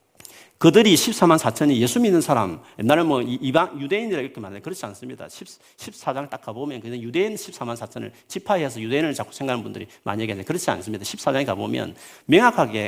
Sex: male